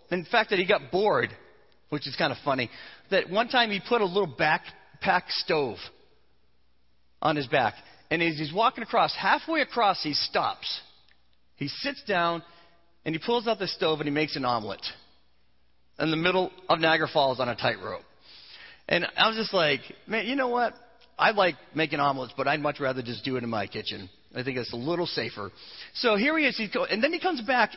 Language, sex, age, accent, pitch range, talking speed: English, male, 40-59, American, 140-225 Hz, 205 wpm